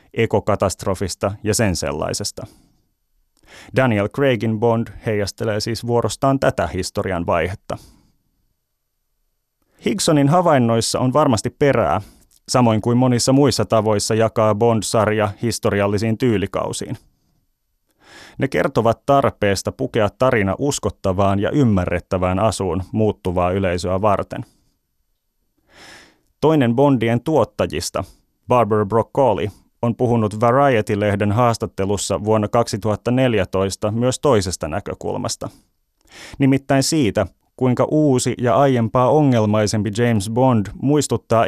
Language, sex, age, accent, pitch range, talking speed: Finnish, male, 30-49, native, 100-125 Hz, 90 wpm